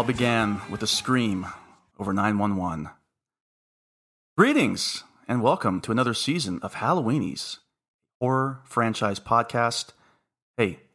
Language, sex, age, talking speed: English, male, 30-49, 100 wpm